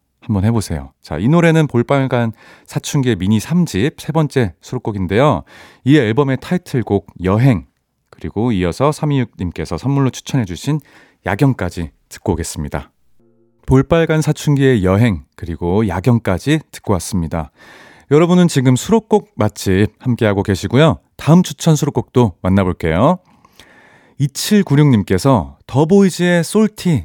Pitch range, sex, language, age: 95-150 Hz, male, Korean, 30-49